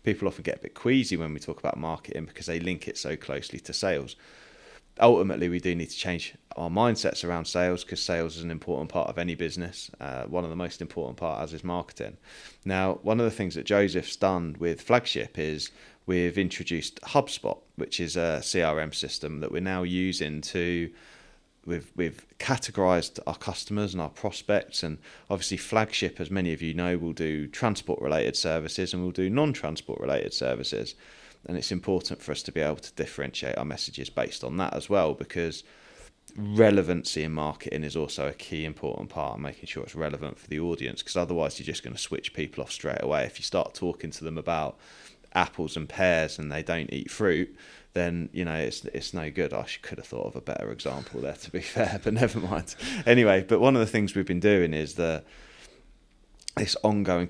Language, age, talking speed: English, 20-39, 200 wpm